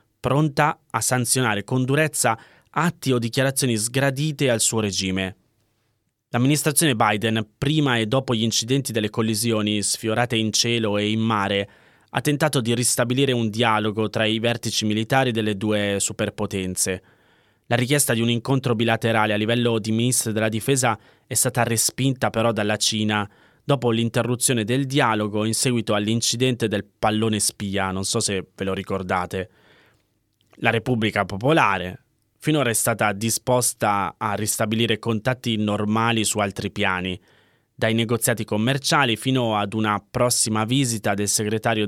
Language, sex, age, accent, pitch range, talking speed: Italian, male, 20-39, native, 105-125 Hz, 140 wpm